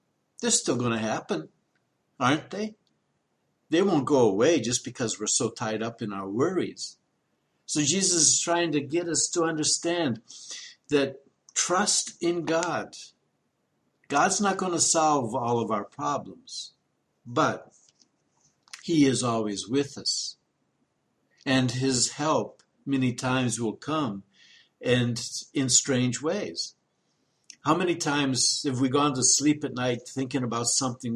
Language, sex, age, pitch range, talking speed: English, male, 60-79, 125-170 Hz, 135 wpm